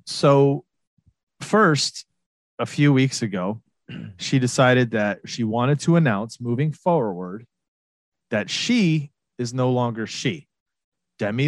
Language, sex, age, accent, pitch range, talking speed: English, male, 30-49, American, 110-140 Hz, 115 wpm